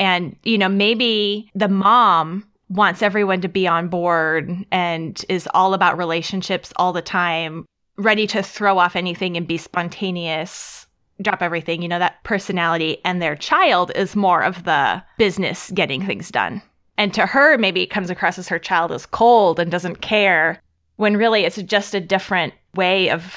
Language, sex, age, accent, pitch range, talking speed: English, female, 20-39, American, 170-205 Hz, 175 wpm